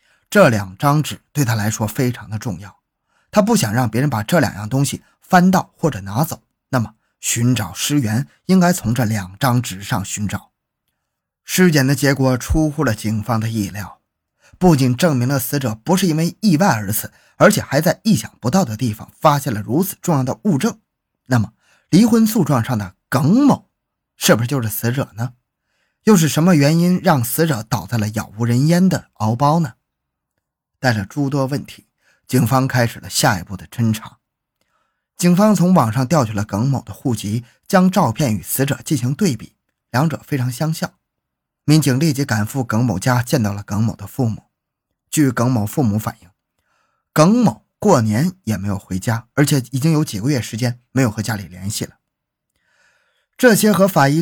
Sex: male